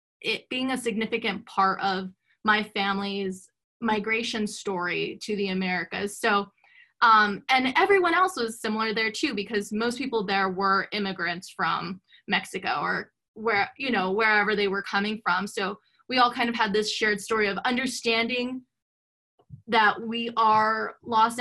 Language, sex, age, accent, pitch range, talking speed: English, female, 20-39, American, 205-250 Hz, 150 wpm